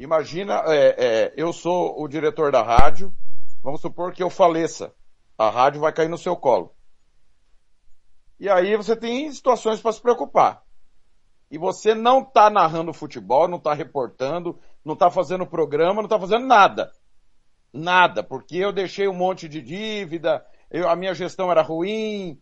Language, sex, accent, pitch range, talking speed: Portuguese, male, Brazilian, 170-230 Hz, 155 wpm